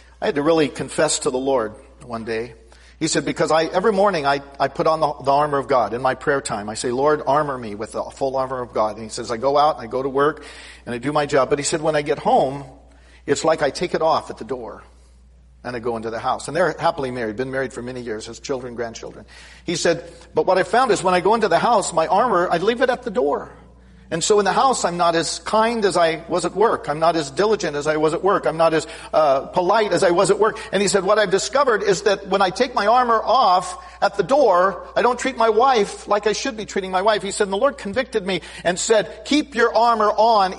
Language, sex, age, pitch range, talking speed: English, male, 50-69, 135-200 Hz, 275 wpm